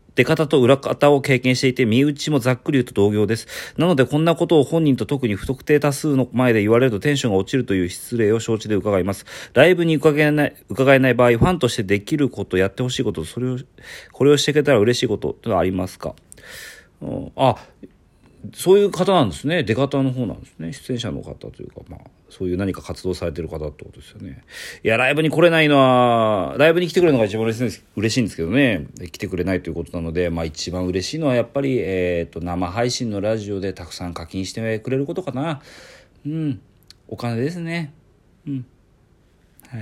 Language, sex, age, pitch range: Japanese, male, 40-59, 95-140 Hz